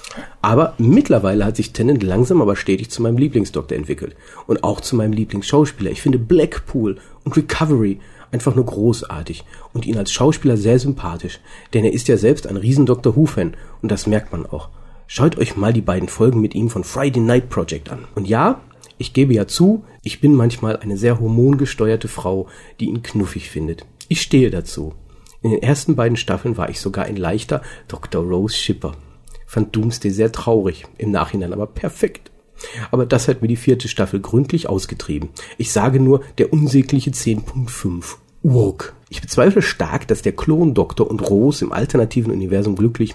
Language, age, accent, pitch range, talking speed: German, 40-59, German, 95-130 Hz, 175 wpm